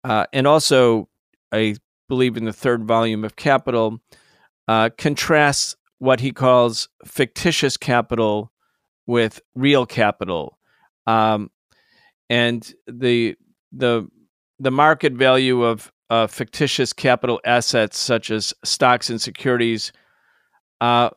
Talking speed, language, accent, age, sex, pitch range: 110 wpm, English, American, 40-59, male, 115-140 Hz